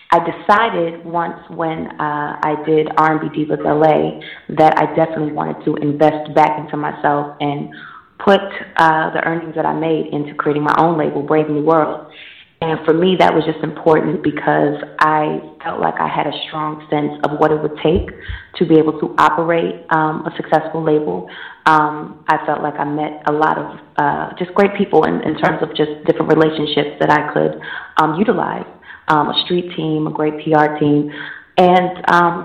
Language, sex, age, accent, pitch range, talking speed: English, female, 20-39, American, 150-165 Hz, 185 wpm